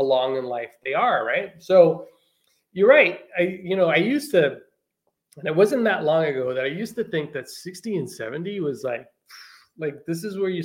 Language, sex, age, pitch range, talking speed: English, male, 20-39, 135-190 Hz, 210 wpm